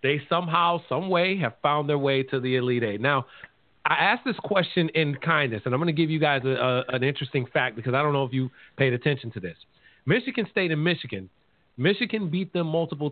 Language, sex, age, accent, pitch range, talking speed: English, male, 40-59, American, 130-170 Hz, 225 wpm